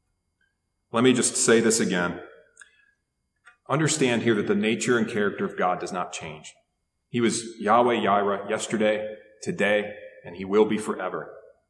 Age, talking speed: 30-49, 150 wpm